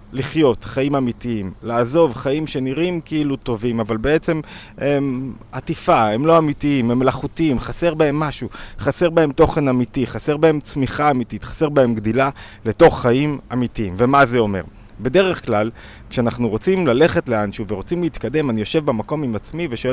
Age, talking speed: 20-39, 155 wpm